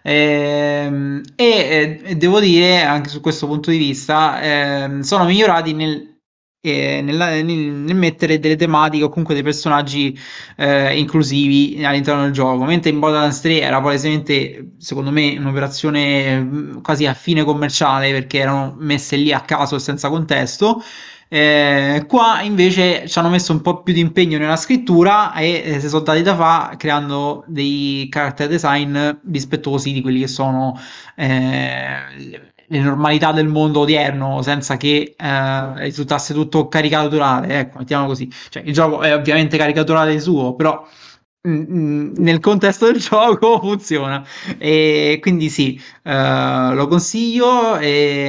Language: Italian